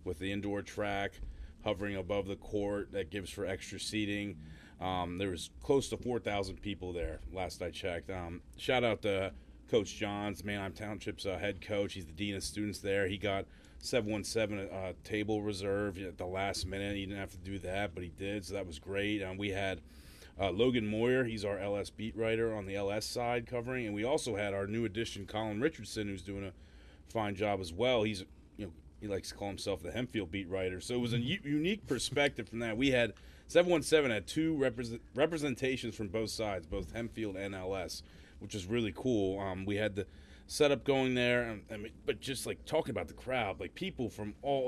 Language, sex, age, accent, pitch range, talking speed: English, male, 30-49, American, 95-110 Hz, 210 wpm